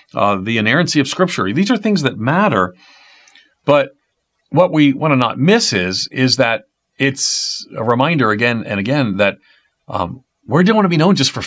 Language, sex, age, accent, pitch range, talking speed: English, male, 50-69, American, 95-135 Hz, 190 wpm